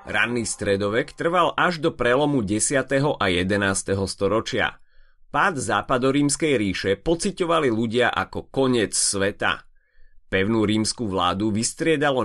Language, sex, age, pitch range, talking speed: Slovak, male, 30-49, 95-135 Hz, 110 wpm